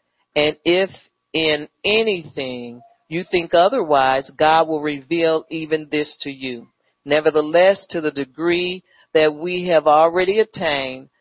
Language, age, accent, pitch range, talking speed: English, 40-59, American, 130-170 Hz, 125 wpm